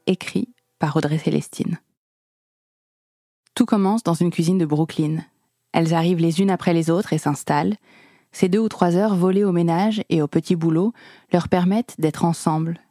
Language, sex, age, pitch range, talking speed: French, female, 20-39, 160-195 Hz, 165 wpm